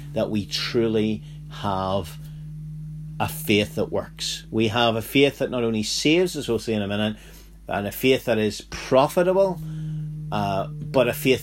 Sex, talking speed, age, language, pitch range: male, 170 wpm, 40-59, English, 95-135 Hz